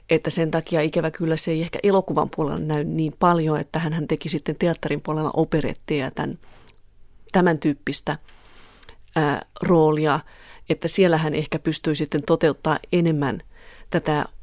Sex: female